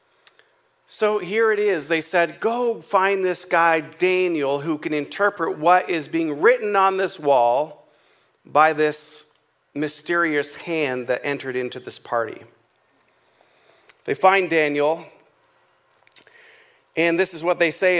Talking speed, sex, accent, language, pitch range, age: 130 wpm, male, American, English, 145-195 Hz, 40-59